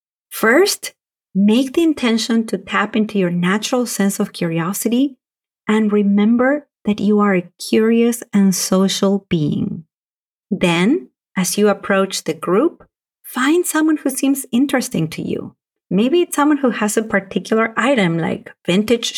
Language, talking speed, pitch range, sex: English, 140 wpm, 195-255 Hz, female